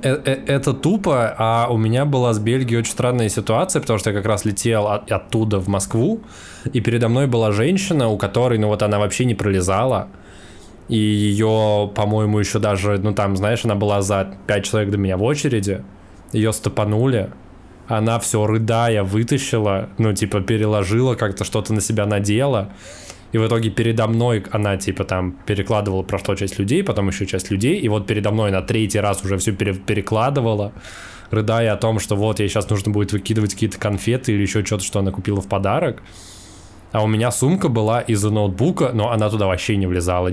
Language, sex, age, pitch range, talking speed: Russian, male, 20-39, 100-115 Hz, 185 wpm